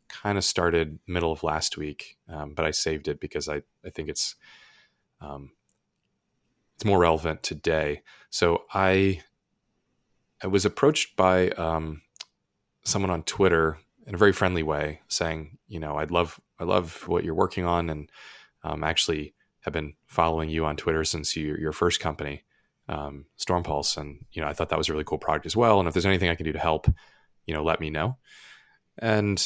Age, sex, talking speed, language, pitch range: 30-49, male, 185 wpm, English, 75-90 Hz